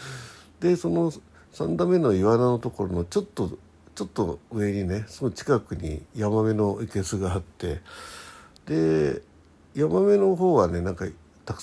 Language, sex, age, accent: Japanese, male, 60-79, native